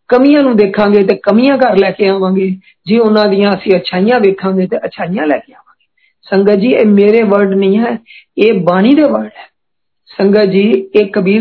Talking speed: 85 wpm